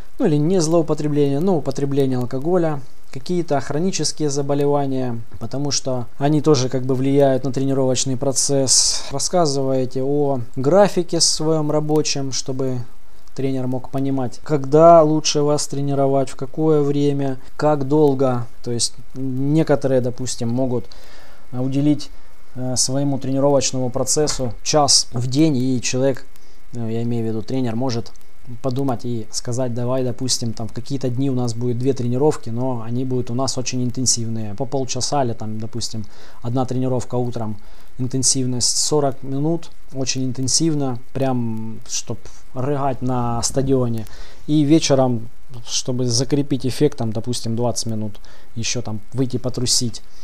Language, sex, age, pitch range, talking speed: Russian, male, 20-39, 120-140 Hz, 130 wpm